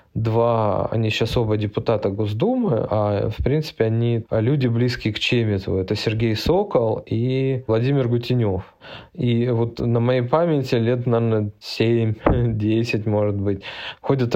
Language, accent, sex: Russian, native, male